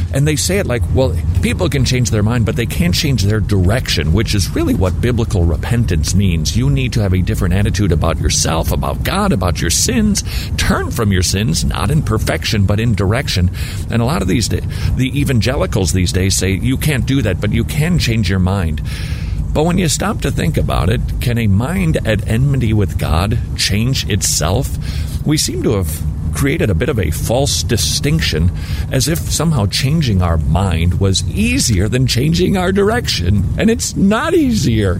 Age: 50-69